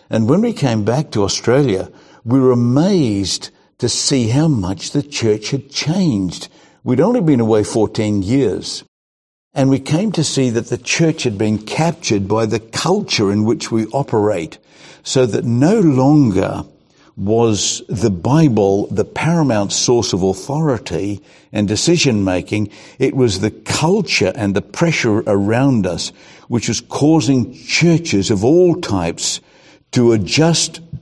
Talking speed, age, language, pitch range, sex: 145 wpm, 60-79, English, 105-140 Hz, male